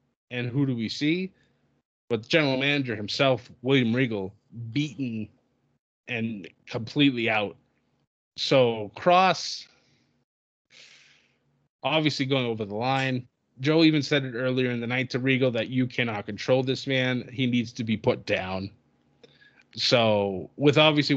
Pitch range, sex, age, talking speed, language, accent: 115-140 Hz, male, 20-39, 135 wpm, English, American